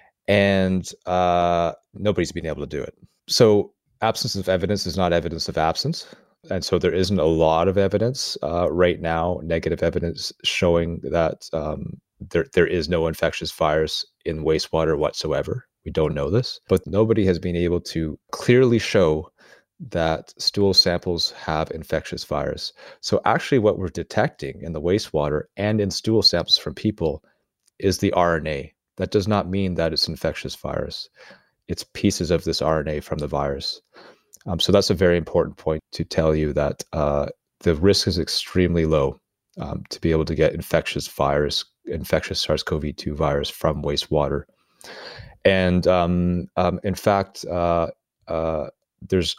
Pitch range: 80-95 Hz